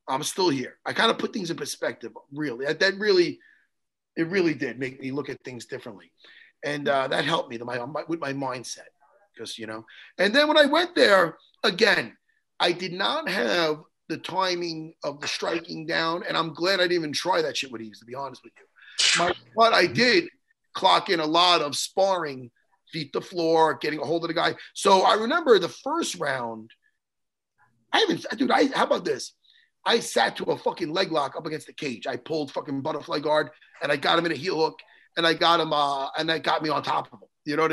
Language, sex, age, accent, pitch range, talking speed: English, male, 30-49, American, 150-220 Hz, 225 wpm